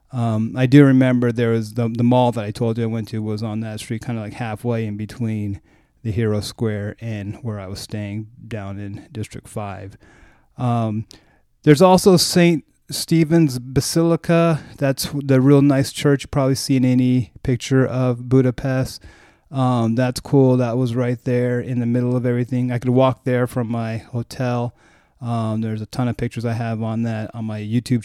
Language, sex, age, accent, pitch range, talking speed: English, male, 30-49, American, 115-135 Hz, 185 wpm